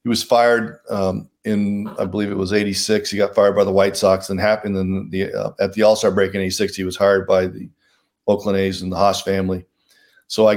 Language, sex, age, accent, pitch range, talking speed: English, male, 40-59, American, 95-110 Hz, 235 wpm